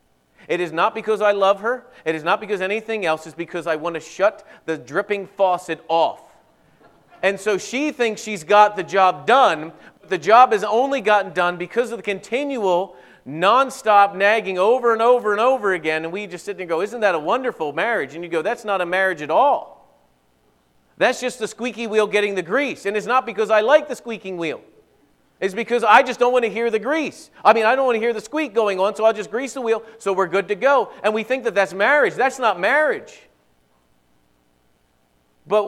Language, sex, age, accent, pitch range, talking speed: English, male, 40-59, American, 180-230 Hz, 220 wpm